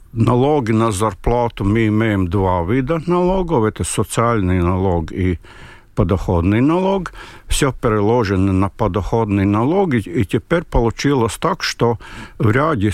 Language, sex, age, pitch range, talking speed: Russian, male, 60-79, 100-130 Hz, 120 wpm